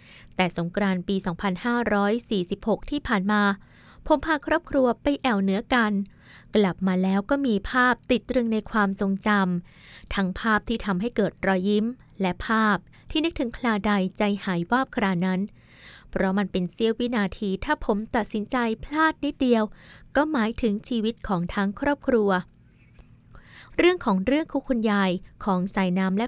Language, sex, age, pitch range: Thai, female, 20-39, 195-240 Hz